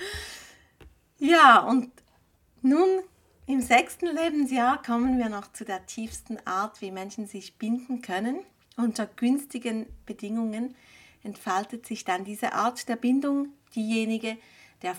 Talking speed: 120 wpm